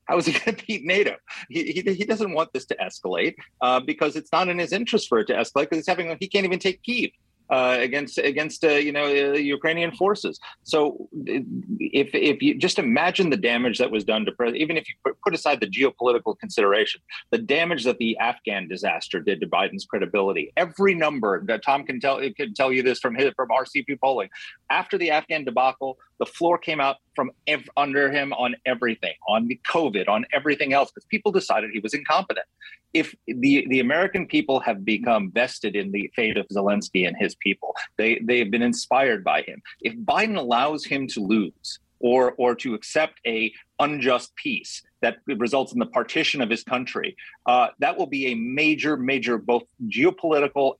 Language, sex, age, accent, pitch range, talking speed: English, male, 40-59, American, 125-190 Hz, 200 wpm